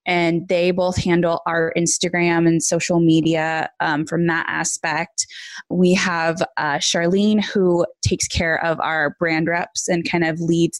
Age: 20-39